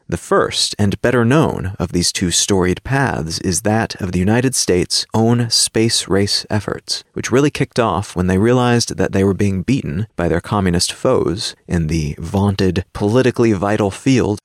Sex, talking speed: male, 175 wpm